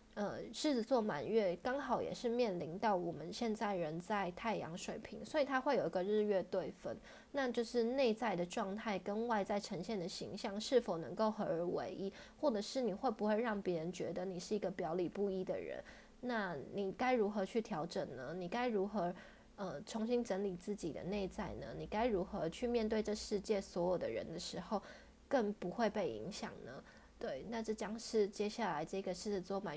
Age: 20-39